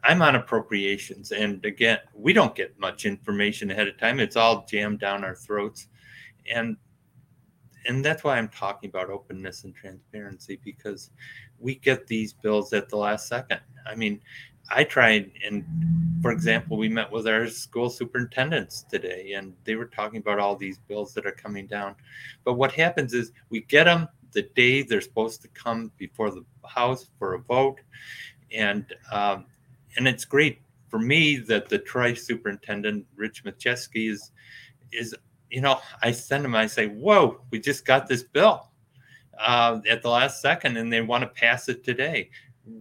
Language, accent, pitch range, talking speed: English, American, 105-135 Hz, 170 wpm